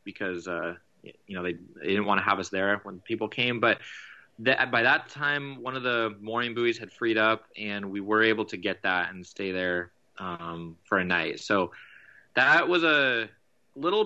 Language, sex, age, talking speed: English, male, 20-39, 200 wpm